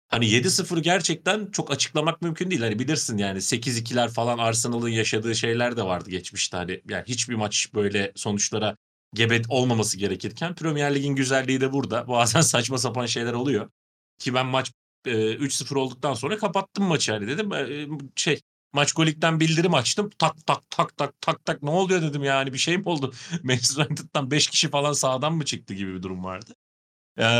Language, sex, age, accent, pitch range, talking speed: Turkish, male, 40-59, native, 115-155 Hz, 175 wpm